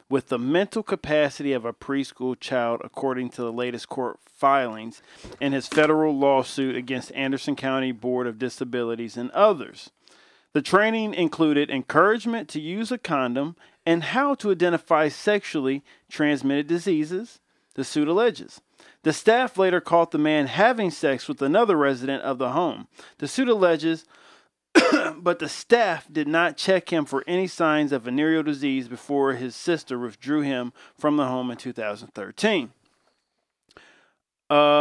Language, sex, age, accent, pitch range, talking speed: English, male, 40-59, American, 130-170 Hz, 145 wpm